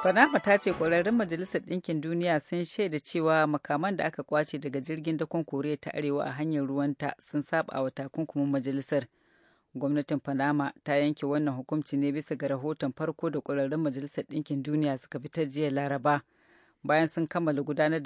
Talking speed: 180 wpm